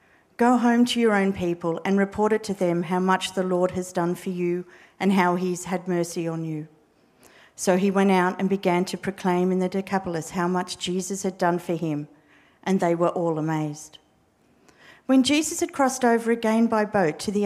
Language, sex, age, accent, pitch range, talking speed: English, female, 50-69, Australian, 175-220 Hz, 205 wpm